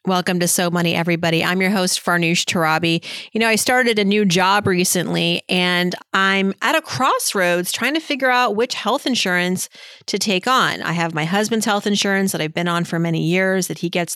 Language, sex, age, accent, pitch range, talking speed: English, female, 40-59, American, 175-220 Hz, 210 wpm